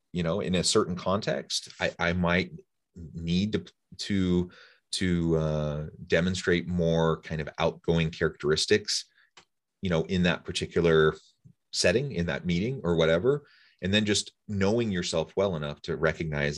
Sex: male